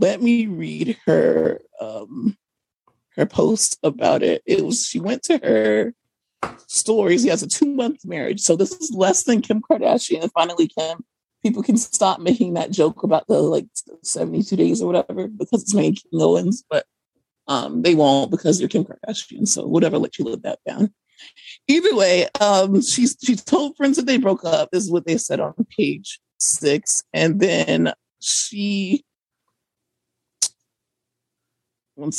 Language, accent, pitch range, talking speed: English, American, 180-260 Hz, 165 wpm